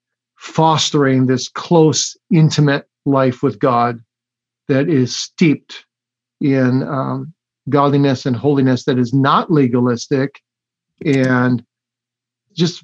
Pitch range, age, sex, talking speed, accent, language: 130-165 Hz, 50-69, male, 100 wpm, American, English